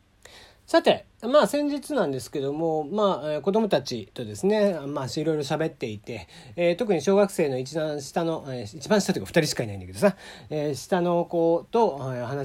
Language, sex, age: Japanese, male, 40-59